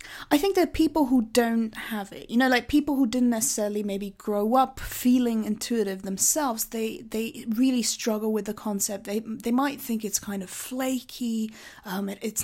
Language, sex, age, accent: English, female, 20-39, British